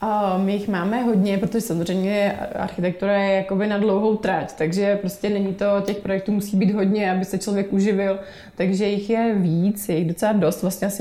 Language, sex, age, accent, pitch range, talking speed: Czech, female, 20-39, native, 170-200 Hz, 185 wpm